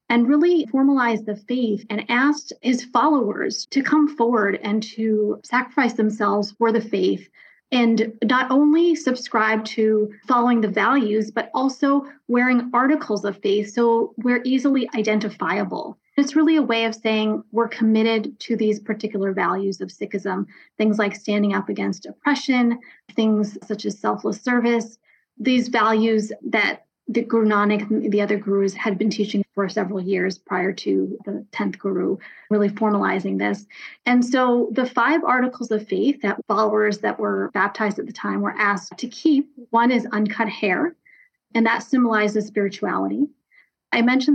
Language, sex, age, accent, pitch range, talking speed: English, female, 30-49, American, 210-255 Hz, 155 wpm